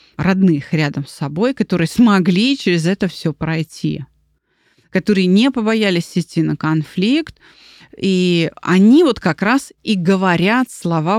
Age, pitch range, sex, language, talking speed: 30-49, 160-205 Hz, female, Russian, 130 wpm